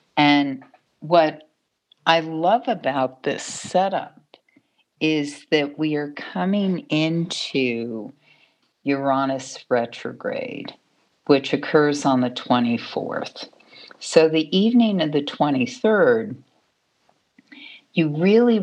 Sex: female